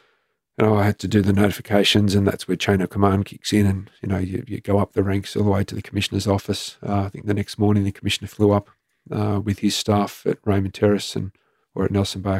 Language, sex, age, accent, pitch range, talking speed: English, male, 40-59, Australian, 95-105 Hz, 260 wpm